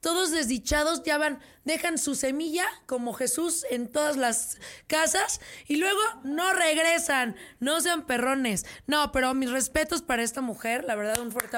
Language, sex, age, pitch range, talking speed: Spanish, female, 20-39, 245-315 Hz, 160 wpm